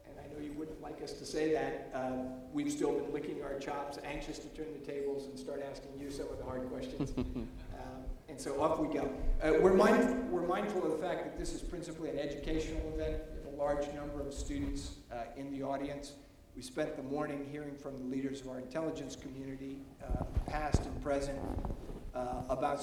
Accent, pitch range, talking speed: American, 135-155 Hz, 205 wpm